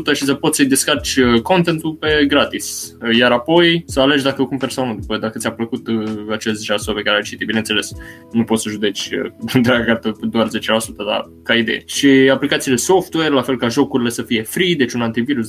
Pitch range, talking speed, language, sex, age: 110-130 Hz, 195 wpm, Romanian, male, 20-39